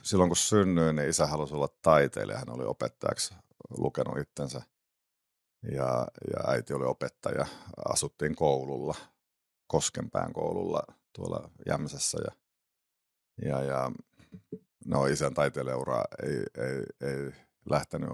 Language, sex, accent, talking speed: Finnish, male, native, 110 wpm